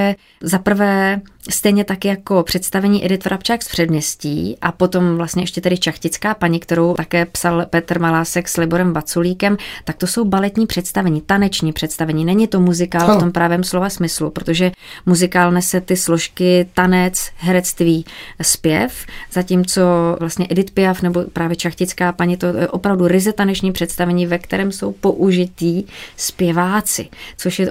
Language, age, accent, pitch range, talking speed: Czech, 30-49, native, 170-185 Hz, 150 wpm